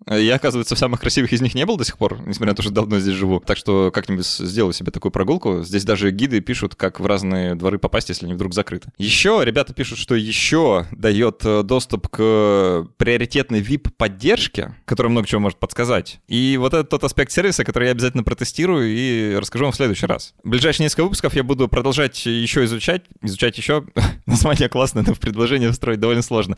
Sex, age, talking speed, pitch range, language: male, 20-39, 200 wpm, 100-130 Hz, Russian